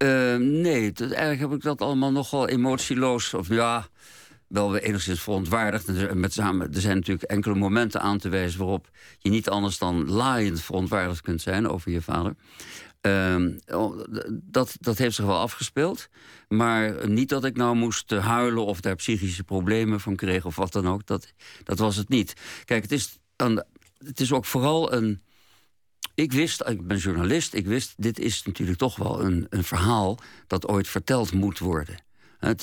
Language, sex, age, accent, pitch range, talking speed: Dutch, male, 50-69, Dutch, 95-115 Hz, 170 wpm